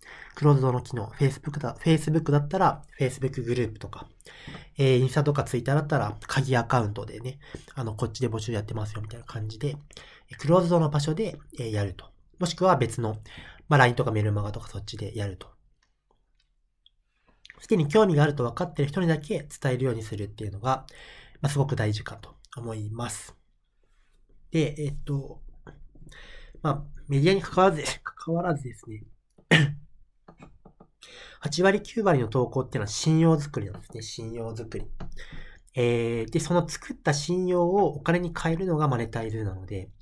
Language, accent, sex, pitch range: Japanese, native, male, 115-155 Hz